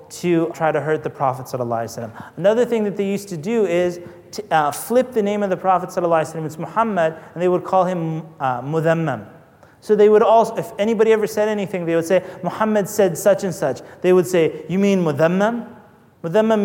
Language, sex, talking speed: English, male, 220 wpm